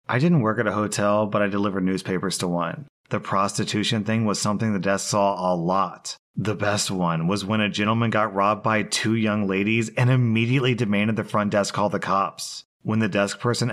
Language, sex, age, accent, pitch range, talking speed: English, male, 30-49, American, 100-120 Hz, 210 wpm